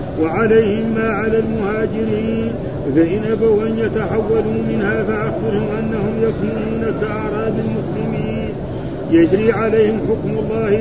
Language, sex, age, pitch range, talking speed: Arabic, male, 50-69, 205-225 Hz, 100 wpm